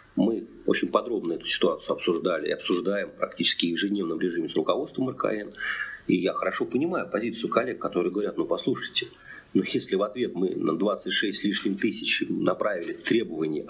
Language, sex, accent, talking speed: Russian, male, native, 160 wpm